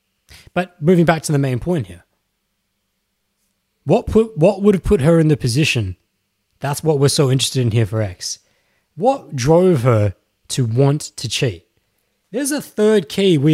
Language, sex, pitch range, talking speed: English, male, 110-165 Hz, 175 wpm